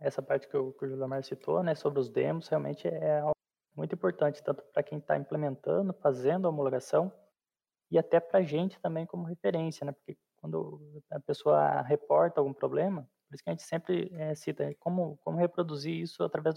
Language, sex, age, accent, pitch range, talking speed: Portuguese, male, 20-39, Brazilian, 145-175 Hz, 185 wpm